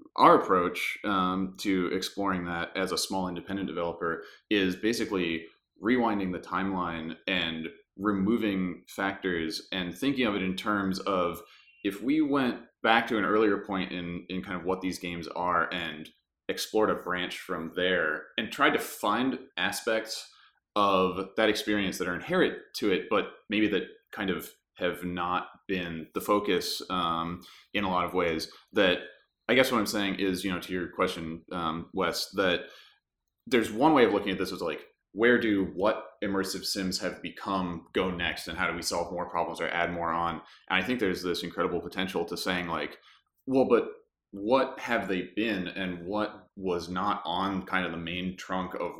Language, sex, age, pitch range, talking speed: English, male, 30-49, 90-105 Hz, 180 wpm